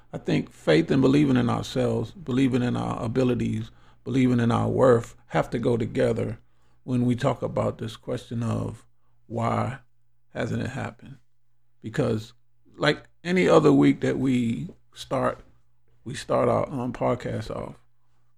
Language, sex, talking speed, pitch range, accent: English, male, 145 wpm, 115-135 Hz, American